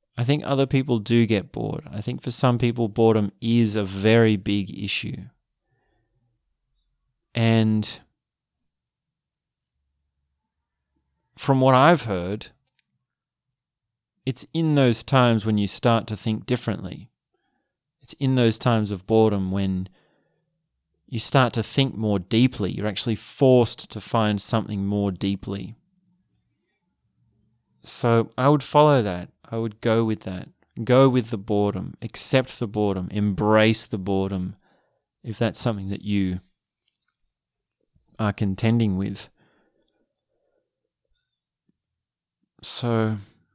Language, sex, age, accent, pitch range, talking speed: English, male, 30-49, Australian, 100-125 Hz, 115 wpm